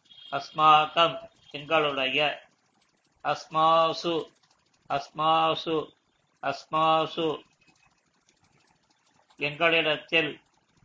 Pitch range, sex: 155-185 Hz, male